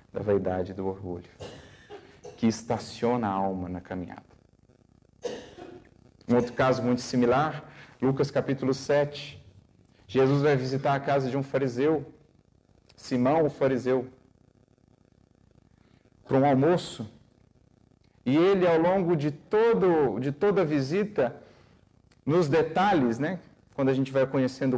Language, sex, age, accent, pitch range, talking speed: Portuguese, male, 40-59, Brazilian, 120-145 Hz, 120 wpm